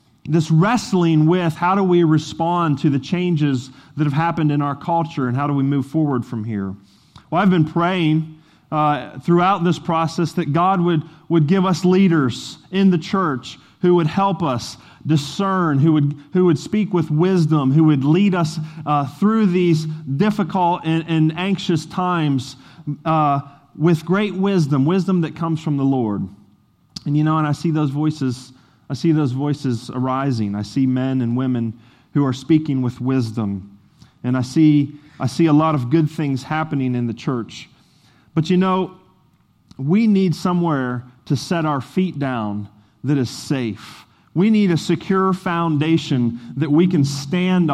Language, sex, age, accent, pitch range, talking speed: English, male, 30-49, American, 140-175 Hz, 170 wpm